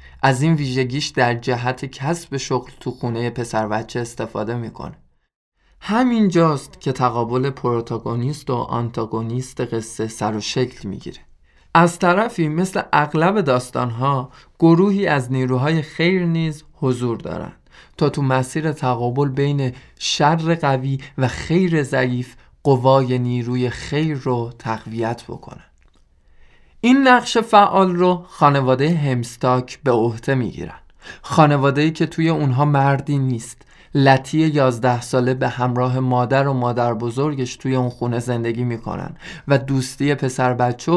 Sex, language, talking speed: male, Persian, 130 wpm